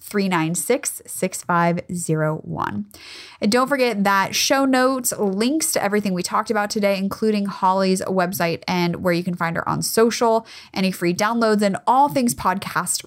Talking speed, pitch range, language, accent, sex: 175 wpm, 180-245 Hz, English, American, female